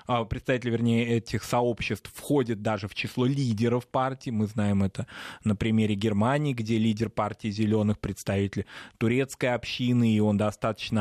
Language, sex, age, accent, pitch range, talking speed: Russian, male, 20-39, native, 105-130 Hz, 140 wpm